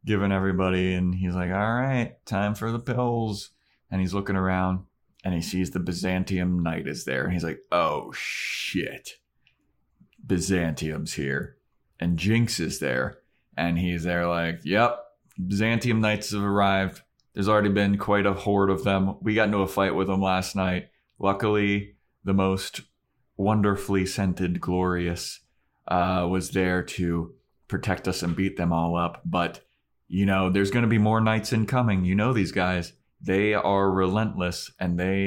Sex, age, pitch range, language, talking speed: male, 30-49, 90-110 Hz, English, 165 wpm